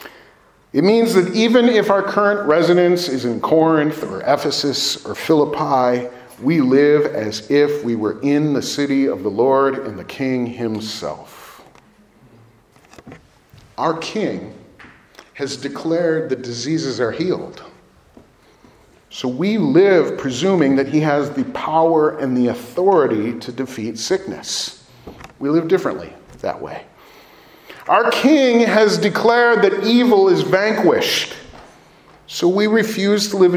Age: 40-59